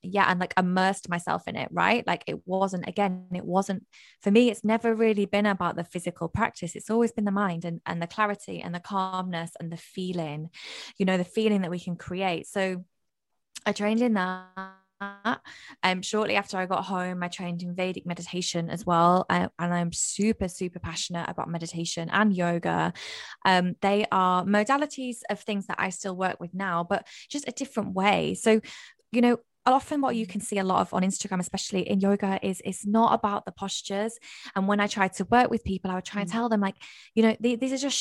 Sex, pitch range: female, 180-215 Hz